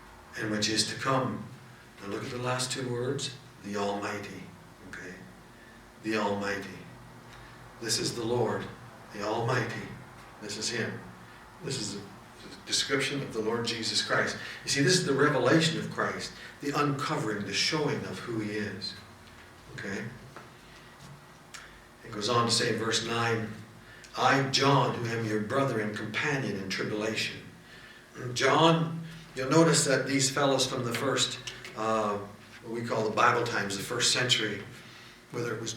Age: 60-79